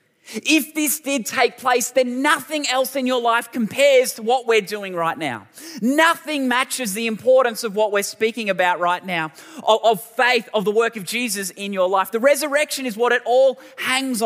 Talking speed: 195 wpm